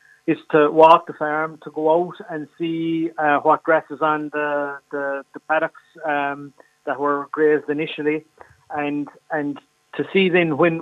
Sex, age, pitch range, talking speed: male, 30-49, 150-160 Hz, 165 wpm